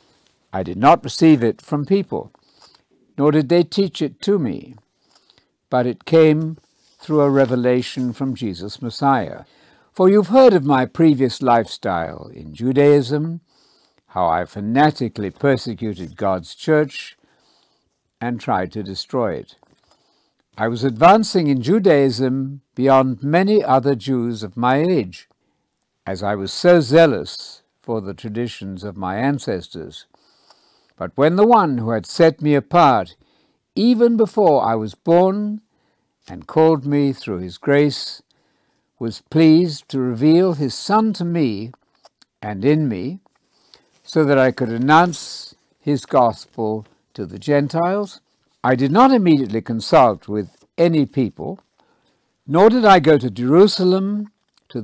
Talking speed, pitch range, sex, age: 135 wpm, 115-165 Hz, male, 60-79